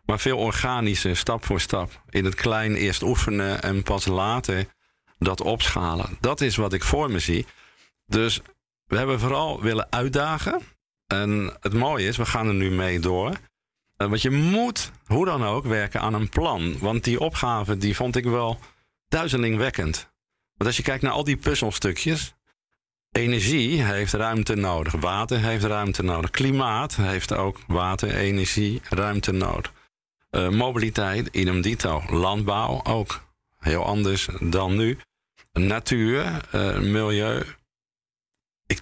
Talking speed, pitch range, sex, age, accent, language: 140 wpm, 95-115 Hz, male, 50-69, Dutch, Dutch